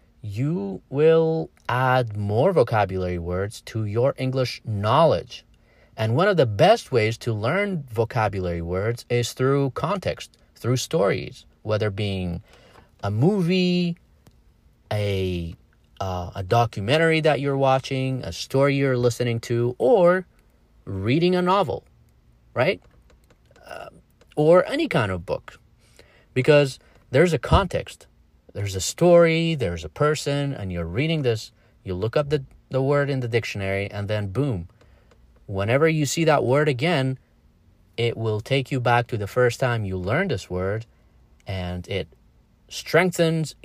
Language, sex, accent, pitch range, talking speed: English, male, American, 100-145 Hz, 135 wpm